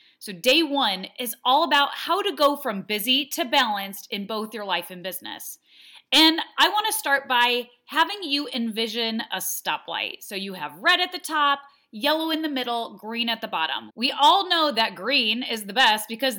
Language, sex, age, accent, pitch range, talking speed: English, female, 30-49, American, 210-290 Hz, 195 wpm